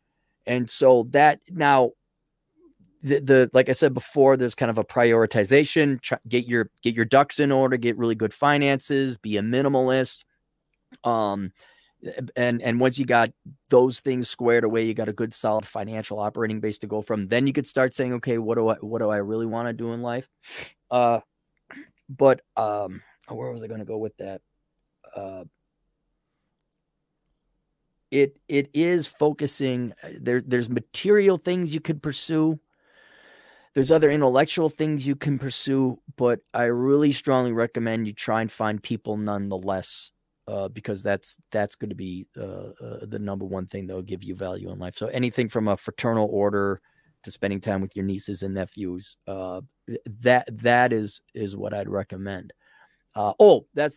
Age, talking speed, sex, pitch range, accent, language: 30-49, 170 wpm, male, 105-140 Hz, American, English